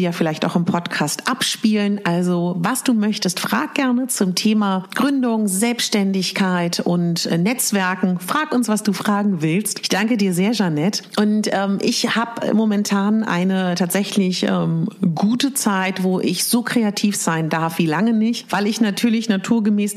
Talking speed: 155 wpm